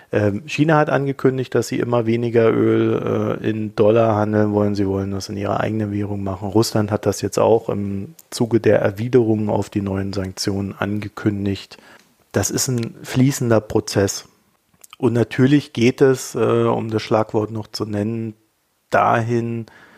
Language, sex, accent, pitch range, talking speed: German, male, German, 100-115 Hz, 150 wpm